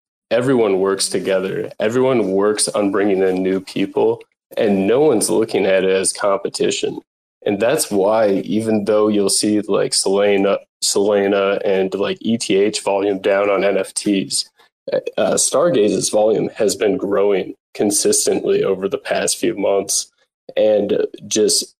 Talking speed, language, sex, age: 135 wpm, English, male, 20-39